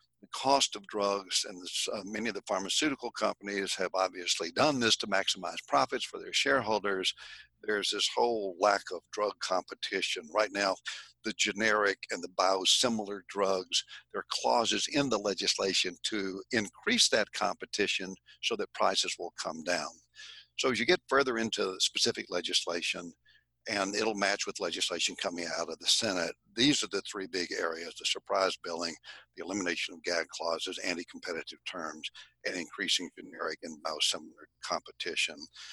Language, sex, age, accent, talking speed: English, male, 60-79, American, 155 wpm